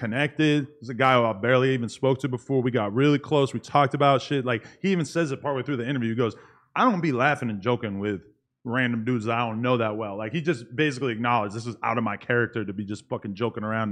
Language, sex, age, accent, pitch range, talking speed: English, male, 20-39, American, 120-145 Hz, 265 wpm